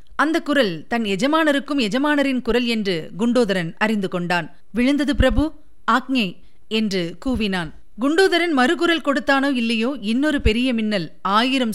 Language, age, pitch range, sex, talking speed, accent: Tamil, 30-49, 200-275 Hz, female, 115 wpm, native